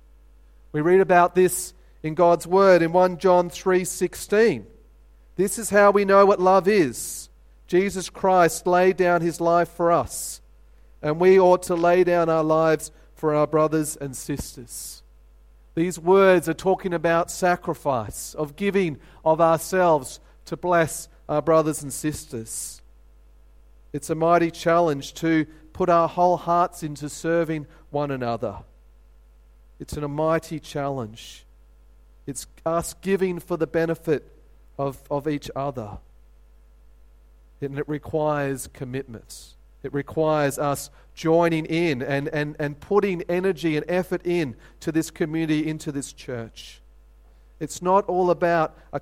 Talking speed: 135 wpm